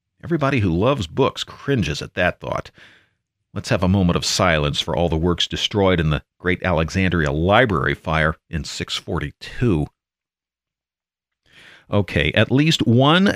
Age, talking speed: 40-59, 140 wpm